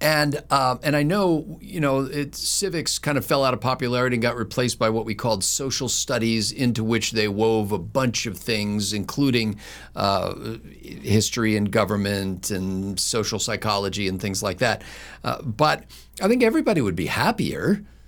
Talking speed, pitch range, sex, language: 170 wpm, 110-145 Hz, male, English